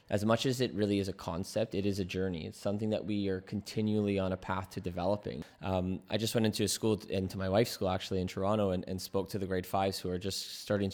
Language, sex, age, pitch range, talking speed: English, male, 20-39, 95-110 Hz, 265 wpm